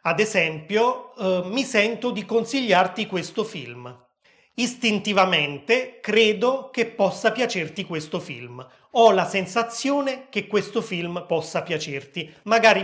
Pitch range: 165-215 Hz